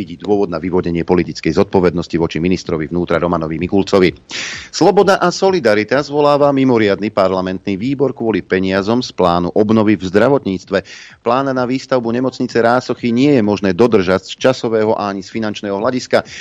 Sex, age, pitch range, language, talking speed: male, 40-59, 95-115 Hz, Slovak, 145 wpm